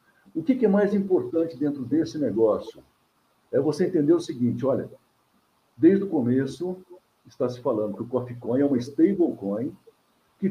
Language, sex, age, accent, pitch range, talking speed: Portuguese, male, 60-79, Brazilian, 120-190 Hz, 165 wpm